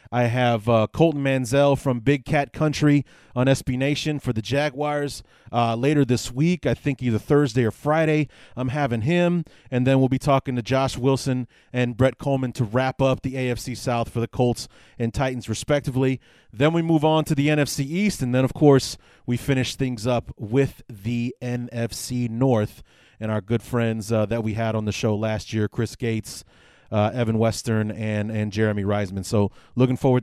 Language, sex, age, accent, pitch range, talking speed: English, male, 30-49, American, 115-140 Hz, 190 wpm